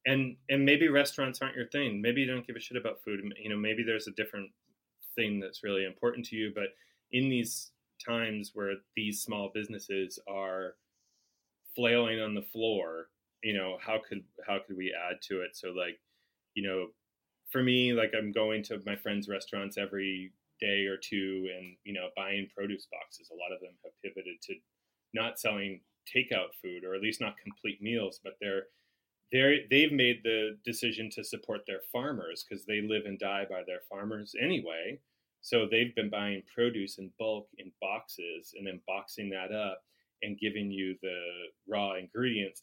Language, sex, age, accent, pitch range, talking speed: English, male, 30-49, American, 95-115 Hz, 185 wpm